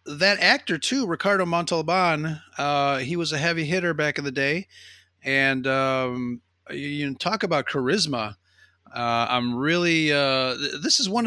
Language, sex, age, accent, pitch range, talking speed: English, male, 30-49, American, 120-155 Hz, 160 wpm